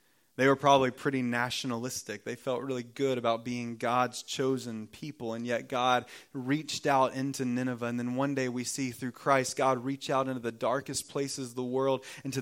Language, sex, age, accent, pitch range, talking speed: English, male, 20-39, American, 130-175 Hz, 195 wpm